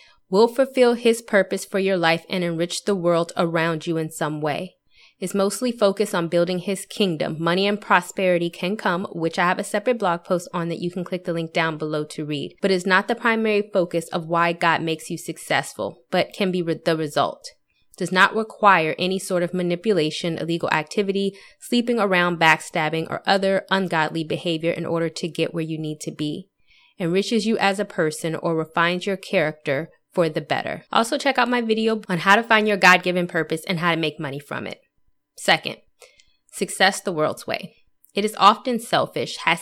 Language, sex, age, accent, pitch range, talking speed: English, female, 20-39, American, 165-195 Hz, 195 wpm